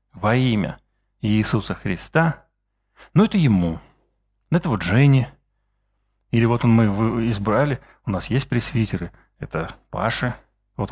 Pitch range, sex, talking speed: 105-140 Hz, male, 120 wpm